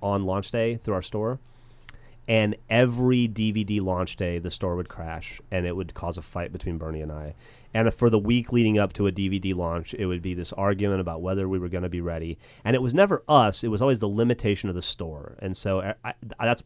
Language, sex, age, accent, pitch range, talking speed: English, male, 30-49, American, 90-110 Hz, 230 wpm